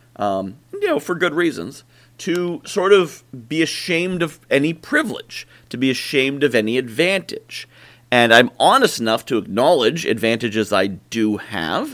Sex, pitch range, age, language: male, 115-150 Hz, 30-49, English